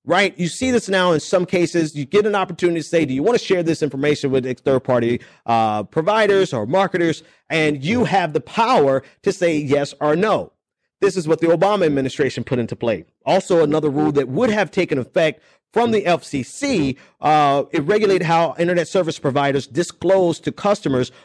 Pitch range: 135-175 Hz